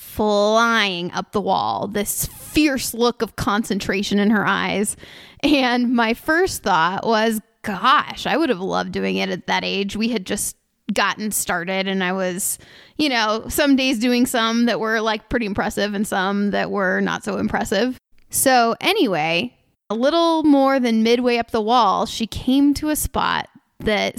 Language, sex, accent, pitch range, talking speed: English, female, American, 205-255 Hz, 170 wpm